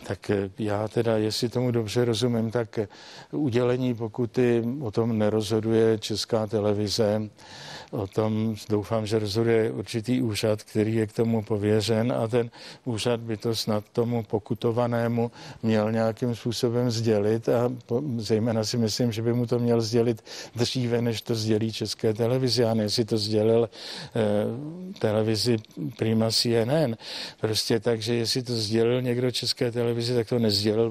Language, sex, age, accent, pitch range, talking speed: Czech, male, 60-79, native, 110-125 Hz, 150 wpm